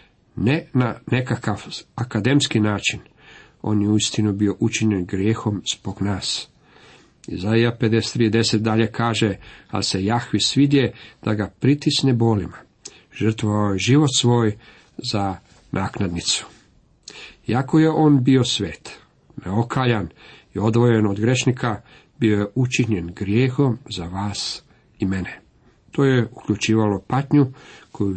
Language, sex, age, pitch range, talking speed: Croatian, male, 50-69, 105-130 Hz, 115 wpm